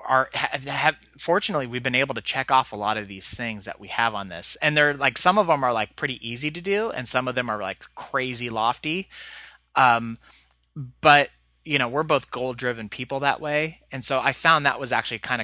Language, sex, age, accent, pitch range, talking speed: English, male, 30-49, American, 105-135 Hz, 230 wpm